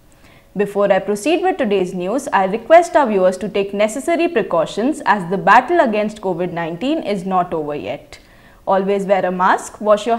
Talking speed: 170 wpm